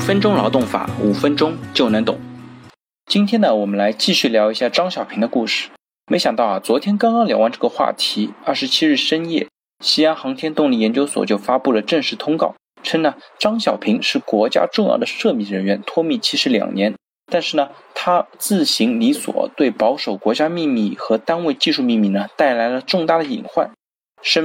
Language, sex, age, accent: Chinese, male, 20-39, native